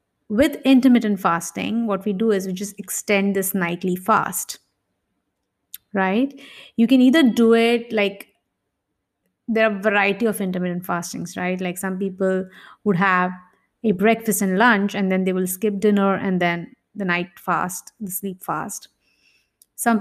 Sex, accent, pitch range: female, Indian, 190-230 Hz